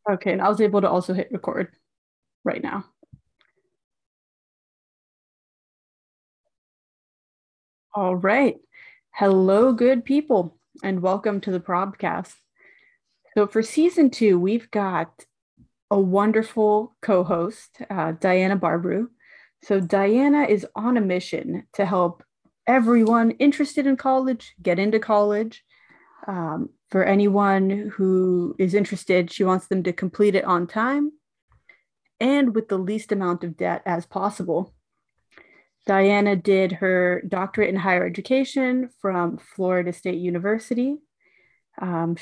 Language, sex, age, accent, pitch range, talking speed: English, female, 30-49, American, 180-225 Hz, 120 wpm